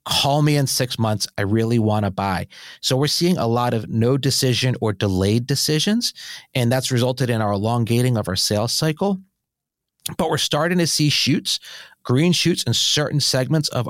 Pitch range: 115-140 Hz